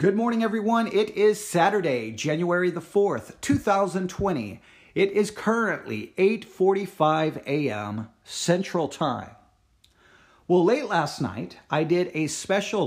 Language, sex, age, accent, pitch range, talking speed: English, male, 40-59, American, 130-205 Hz, 115 wpm